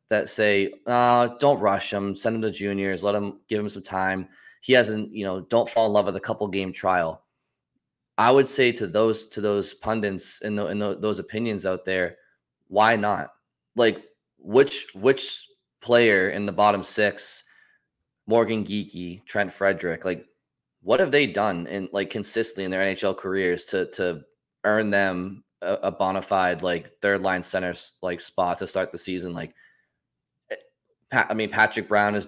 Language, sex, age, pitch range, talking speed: English, male, 20-39, 95-110 Hz, 165 wpm